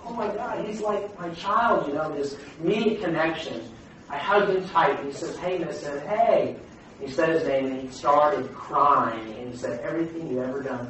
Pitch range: 140-205 Hz